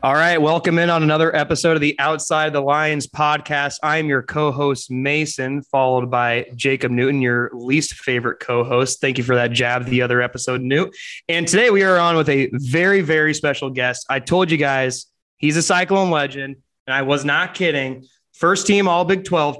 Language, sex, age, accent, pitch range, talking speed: English, male, 20-39, American, 130-170 Hz, 190 wpm